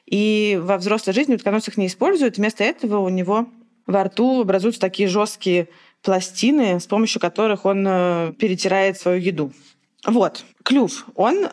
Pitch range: 185-220 Hz